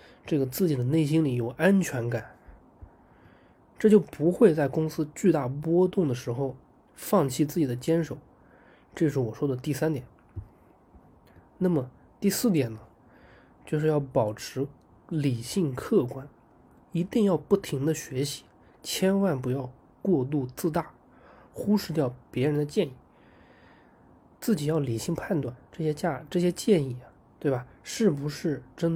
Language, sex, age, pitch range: Chinese, male, 20-39, 130-175 Hz